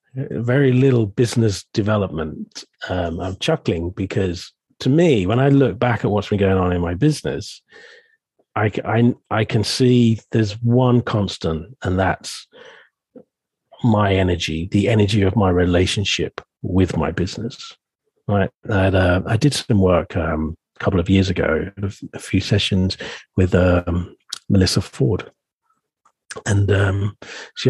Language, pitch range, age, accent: English, 95-130 Hz, 40-59, British